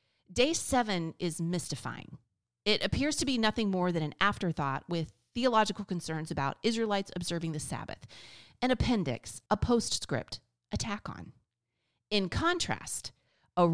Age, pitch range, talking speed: 30-49, 145-235 Hz, 130 wpm